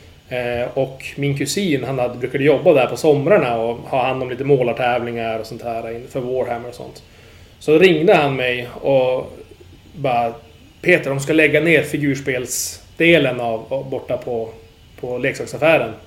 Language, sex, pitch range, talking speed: Swedish, male, 115-145 Hz, 145 wpm